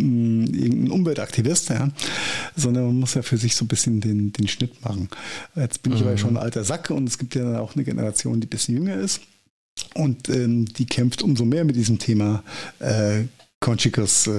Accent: German